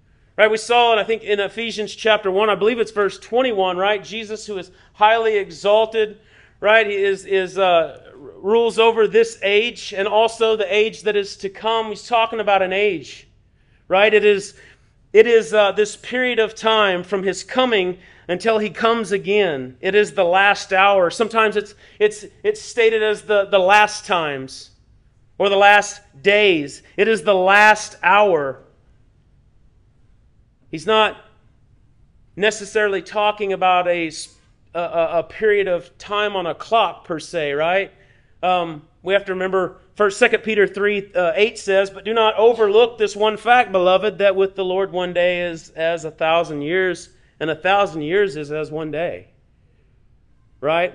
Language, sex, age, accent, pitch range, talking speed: English, male, 40-59, American, 170-215 Hz, 165 wpm